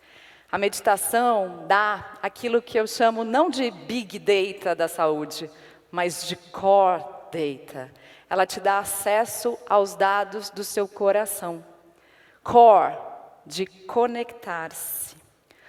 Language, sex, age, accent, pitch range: Chinese, female, 30-49, Brazilian, 190-230 Hz